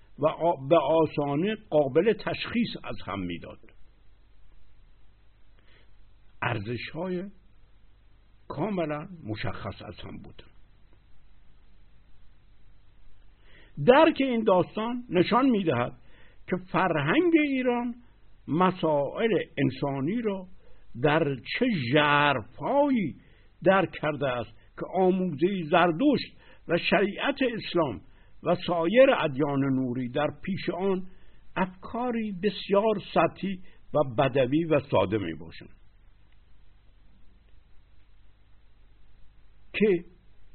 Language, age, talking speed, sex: Persian, 60-79, 80 wpm, male